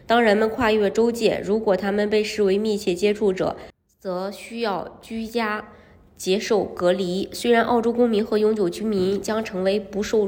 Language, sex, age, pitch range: Chinese, female, 20-39, 185-220 Hz